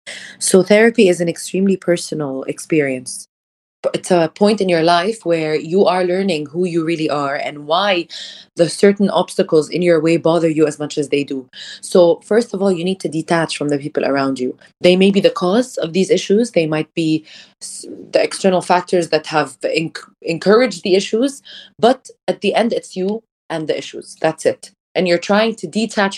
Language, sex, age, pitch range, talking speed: English, female, 20-39, 160-195 Hz, 195 wpm